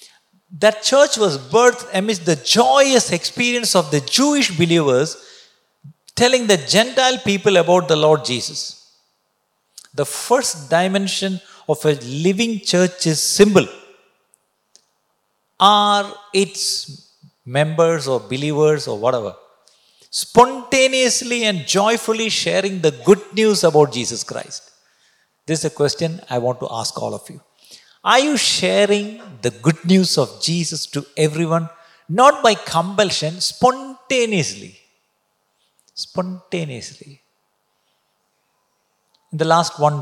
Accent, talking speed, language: native, 115 wpm, Malayalam